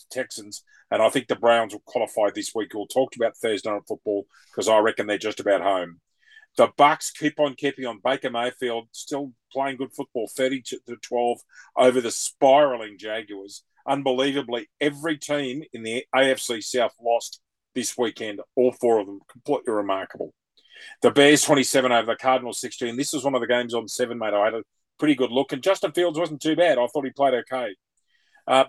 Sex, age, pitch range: male, 40-59, 115-145 Hz